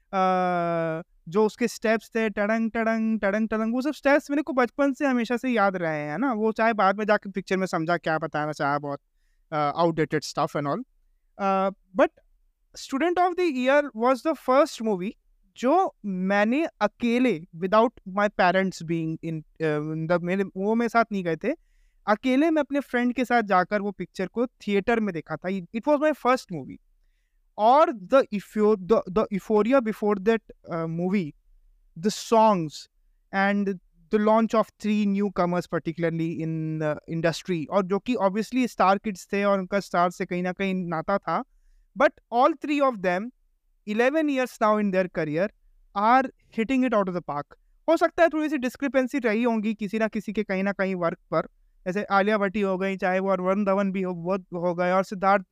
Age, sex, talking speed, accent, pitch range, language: 20-39, male, 185 wpm, native, 180-240 Hz, Hindi